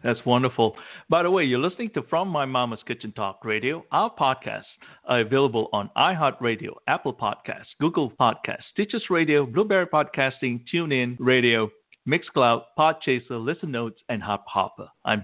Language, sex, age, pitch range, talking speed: English, male, 60-79, 115-170 Hz, 155 wpm